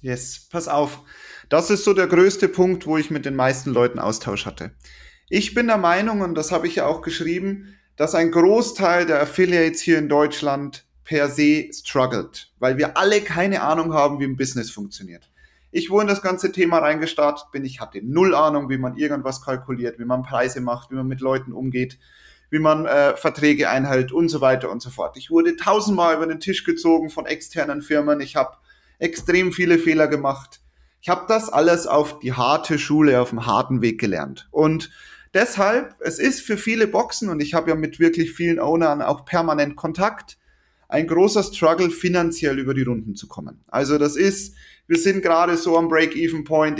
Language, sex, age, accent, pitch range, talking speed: German, male, 30-49, German, 135-170 Hz, 190 wpm